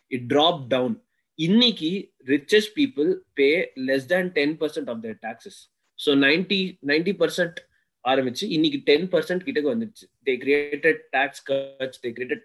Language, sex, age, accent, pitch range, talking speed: Tamil, male, 20-39, native, 130-180 Hz, 120 wpm